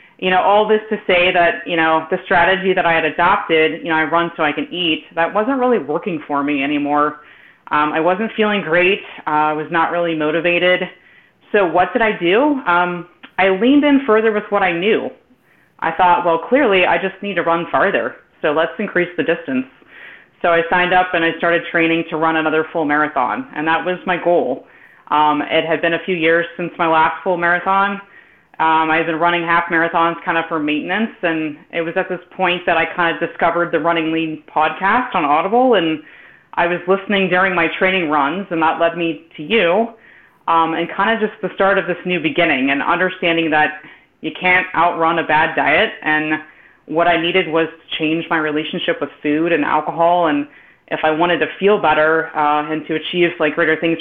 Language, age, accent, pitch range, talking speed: English, 30-49, American, 155-185 Hz, 210 wpm